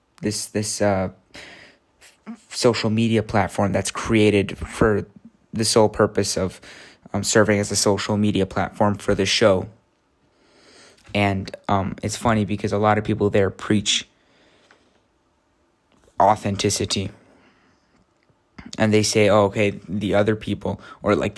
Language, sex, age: English, male, 20-39